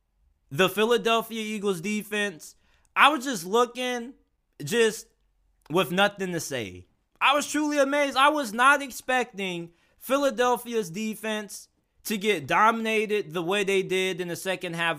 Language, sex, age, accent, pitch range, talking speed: English, male, 20-39, American, 190-240 Hz, 135 wpm